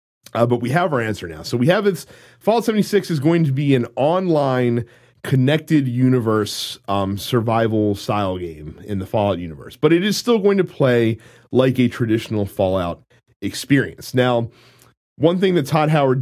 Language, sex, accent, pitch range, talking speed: English, male, American, 110-150 Hz, 175 wpm